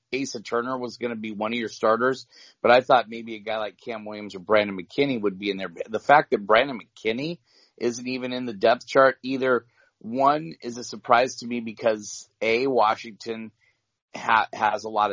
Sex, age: male, 30-49